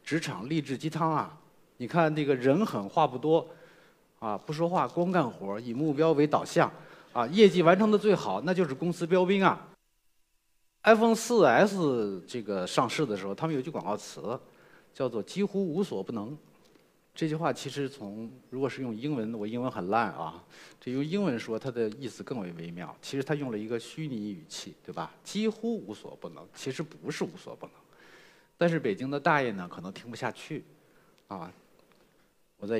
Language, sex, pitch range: Chinese, male, 115-170 Hz